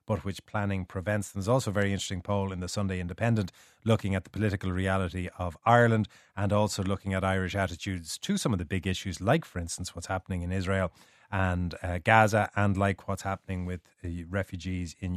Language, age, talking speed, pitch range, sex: English, 30-49, 200 wpm, 90-115 Hz, male